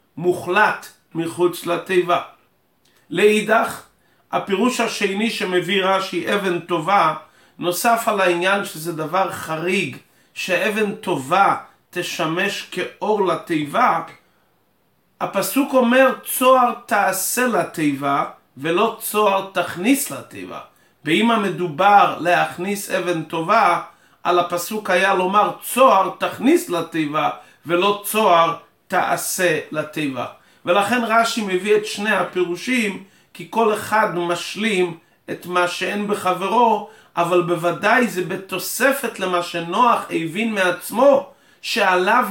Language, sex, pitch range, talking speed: English, male, 170-210 Hz, 100 wpm